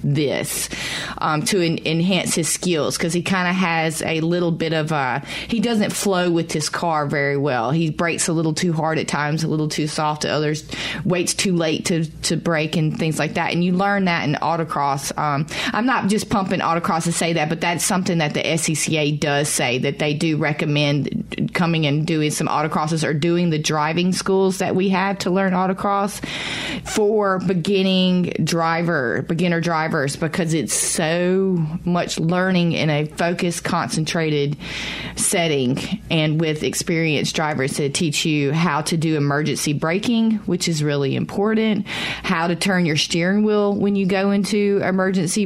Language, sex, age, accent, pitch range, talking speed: English, female, 30-49, American, 155-185 Hz, 175 wpm